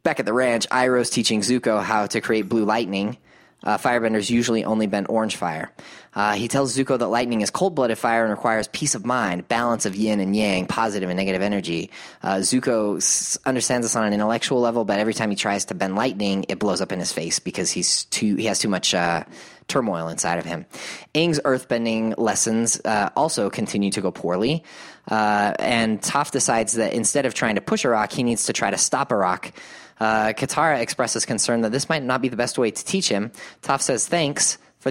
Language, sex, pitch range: English, male, 105-125 Hz